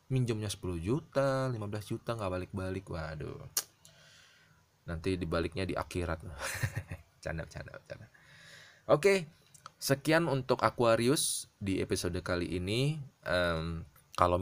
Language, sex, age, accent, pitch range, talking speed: Indonesian, male, 20-39, native, 90-120 Hz, 100 wpm